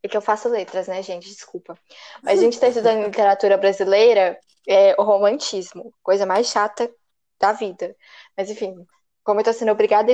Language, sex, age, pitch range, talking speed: Portuguese, female, 10-29, 200-265 Hz, 185 wpm